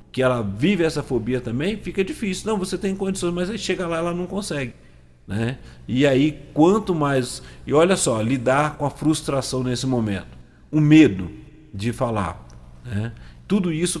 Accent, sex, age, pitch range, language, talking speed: Brazilian, male, 40-59, 120-175 Hz, Portuguese, 175 wpm